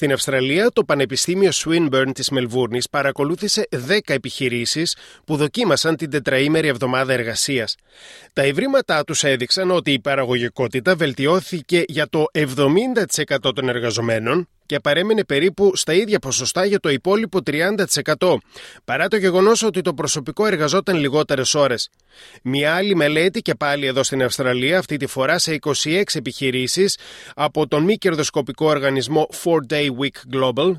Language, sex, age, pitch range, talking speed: Greek, male, 30-49, 140-185 Hz, 135 wpm